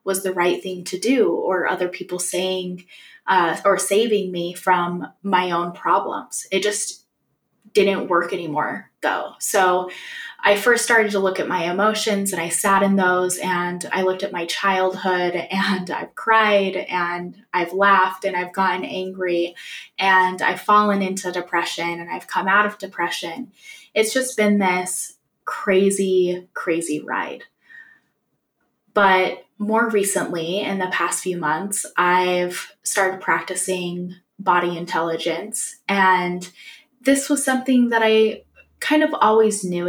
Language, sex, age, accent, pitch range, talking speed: English, female, 20-39, American, 180-220 Hz, 145 wpm